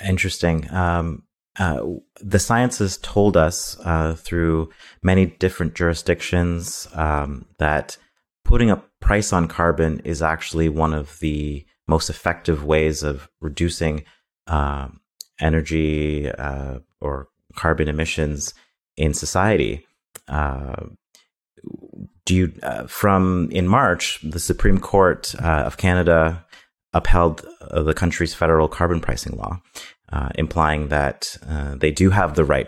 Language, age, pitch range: English, 30-49, 75-85 Hz